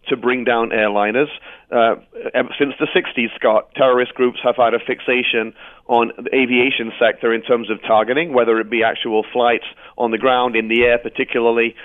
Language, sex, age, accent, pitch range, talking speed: English, male, 30-49, British, 120-135 Hz, 175 wpm